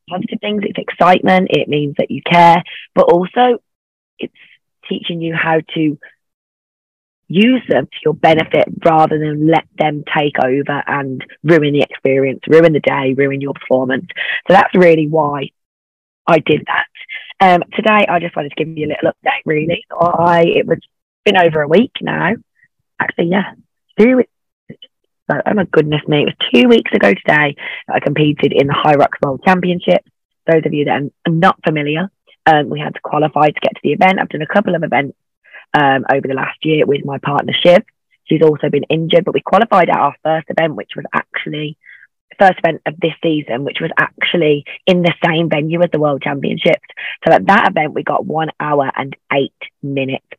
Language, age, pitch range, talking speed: English, 20-39, 145-175 Hz, 190 wpm